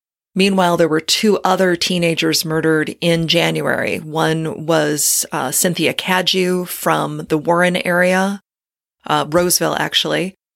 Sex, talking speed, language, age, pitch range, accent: female, 120 wpm, English, 30-49, 160-185 Hz, American